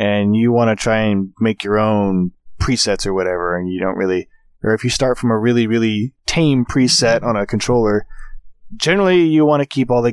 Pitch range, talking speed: 100-130 Hz, 215 wpm